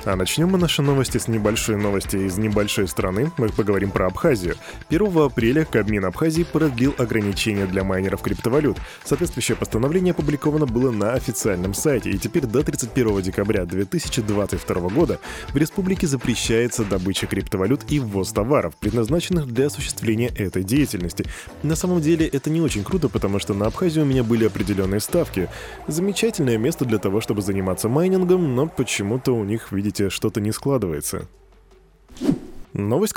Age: 20-39